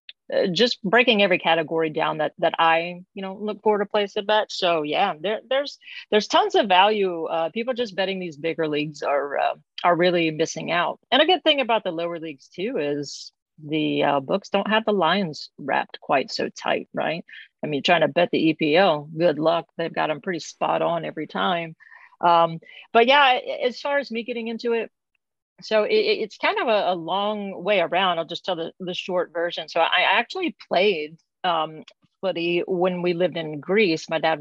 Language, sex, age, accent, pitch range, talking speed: English, female, 40-59, American, 165-215 Hz, 200 wpm